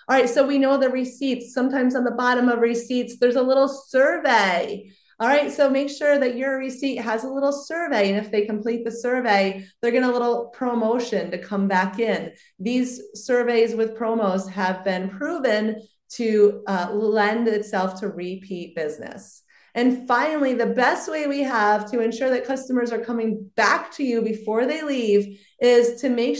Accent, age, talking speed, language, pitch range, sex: American, 30-49, 185 wpm, English, 210-265 Hz, female